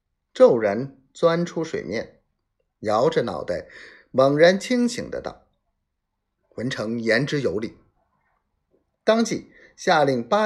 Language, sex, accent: Chinese, male, native